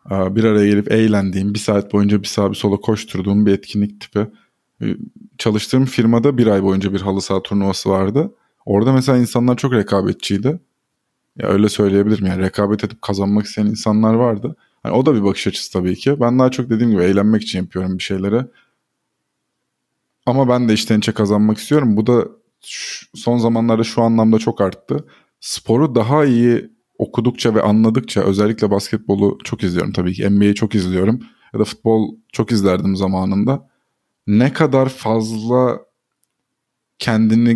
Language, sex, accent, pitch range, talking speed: Turkish, male, native, 100-120 Hz, 155 wpm